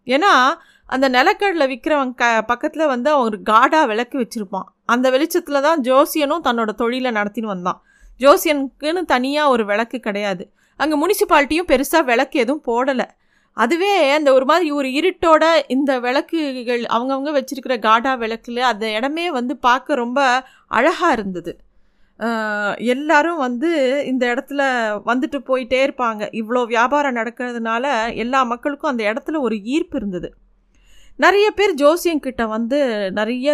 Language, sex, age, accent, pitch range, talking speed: Tamil, female, 30-49, native, 230-290 Hz, 125 wpm